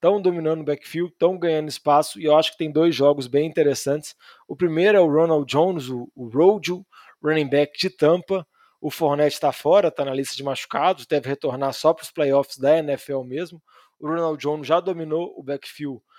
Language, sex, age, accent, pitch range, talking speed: Portuguese, male, 20-39, Brazilian, 145-165 Hz, 200 wpm